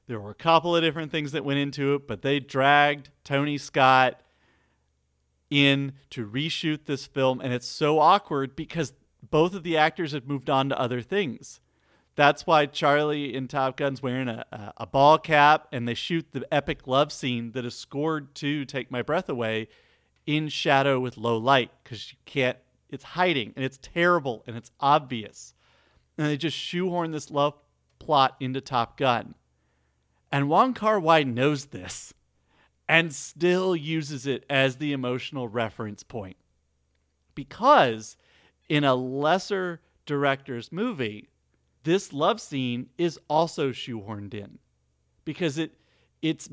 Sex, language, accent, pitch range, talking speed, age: male, English, American, 115-150 Hz, 155 wpm, 40-59